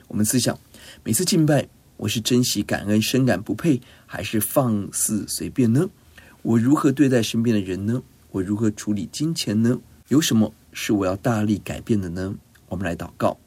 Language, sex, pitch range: Chinese, male, 100-120 Hz